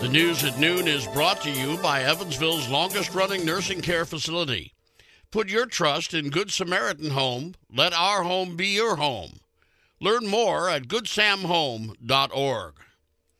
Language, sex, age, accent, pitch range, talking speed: English, male, 50-69, American, 155-195 Hz, 140 wpm